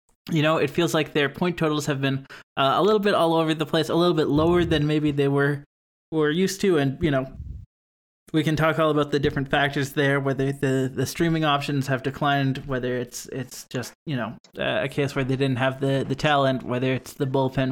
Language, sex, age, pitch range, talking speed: English, male, 20-39, 135-155 Hz, 230 wpm